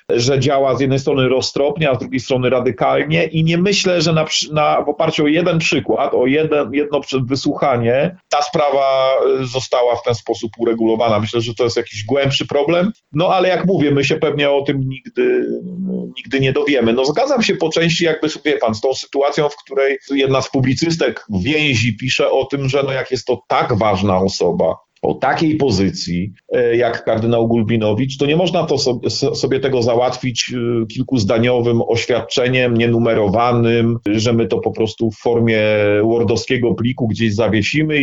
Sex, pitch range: male, 115-155 Hz